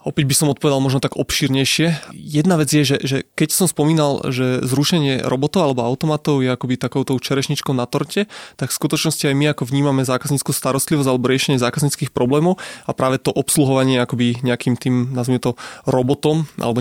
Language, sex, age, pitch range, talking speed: Slovak, male, 20-39, 130-155 Hz, 180 wpm